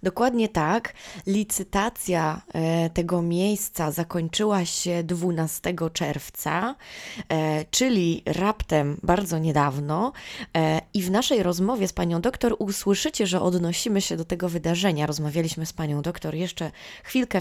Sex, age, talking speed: female, 20-39, 115 wpm